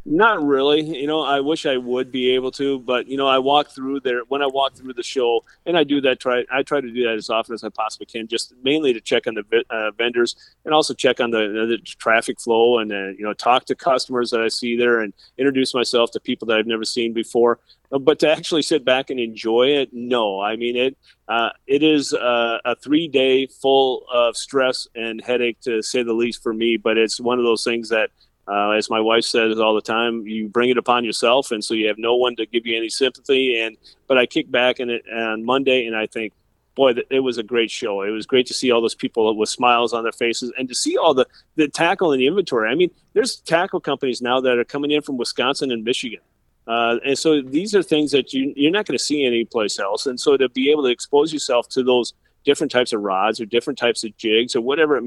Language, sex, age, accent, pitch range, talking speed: English, male, 30-49, American, 115-140 Hz, 245 wpm